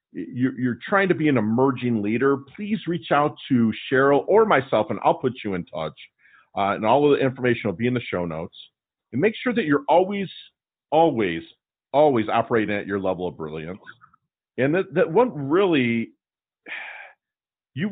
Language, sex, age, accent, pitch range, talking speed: English, male, 50-69, American, 105-150 Hz, 175 wpm